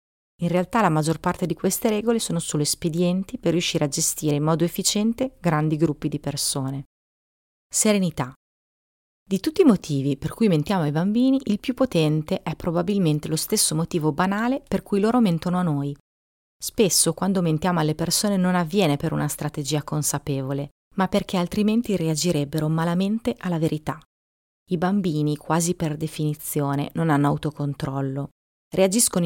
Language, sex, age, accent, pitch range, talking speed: Italian, female, 30-49, native, 150-185 Hz, 150 wpm